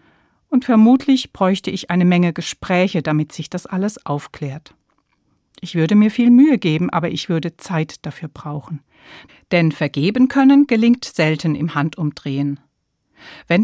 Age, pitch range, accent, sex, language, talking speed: 60-79, 155-215 Hz, German, female, German, 140 wpm